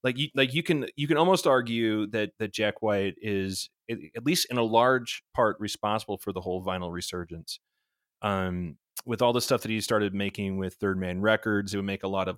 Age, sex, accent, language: 30-49, male, American, English